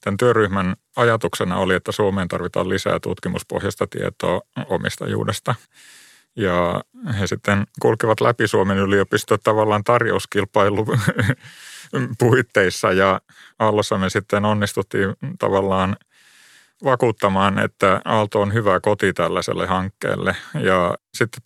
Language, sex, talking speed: Finnish, male, 100 wpm